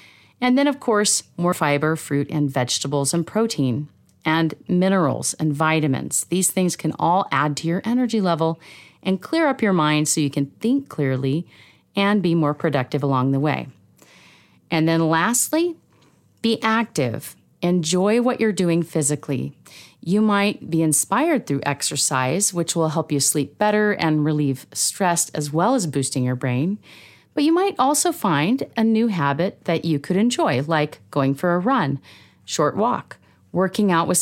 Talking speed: 165 wpm